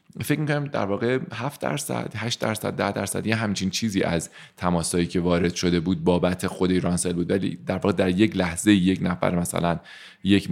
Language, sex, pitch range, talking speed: Persian, male, 85-110 Hz, 190 wpm